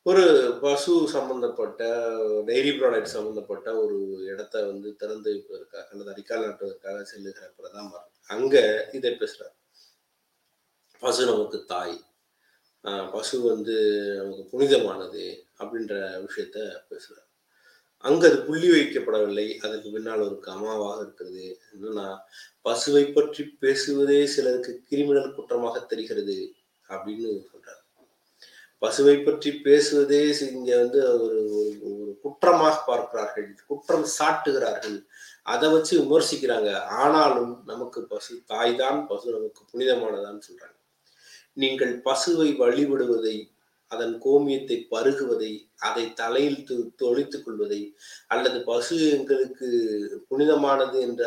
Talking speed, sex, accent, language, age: 100 wpm, male, native, Tamil, 30-49